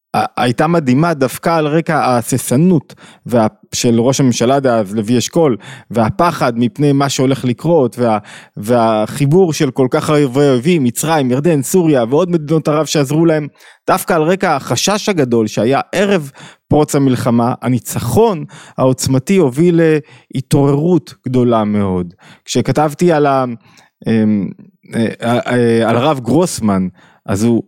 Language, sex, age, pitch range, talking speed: Hebrew, male, 20-39, 120-160 Hz, 115 wpm